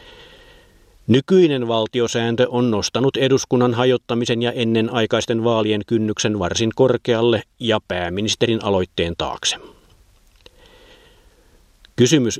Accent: native